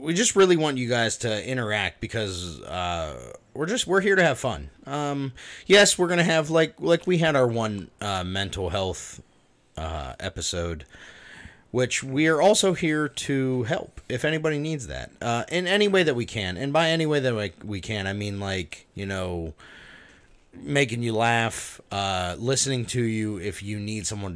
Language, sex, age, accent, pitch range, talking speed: English, male, 30-49, American, 95-130 Hz, 180 wpm